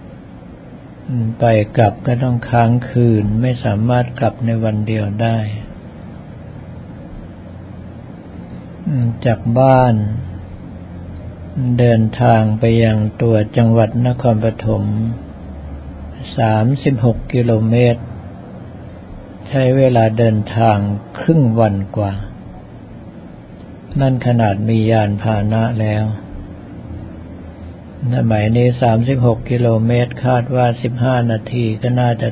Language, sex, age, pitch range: Thai, male, 60-79, 100-120 Hz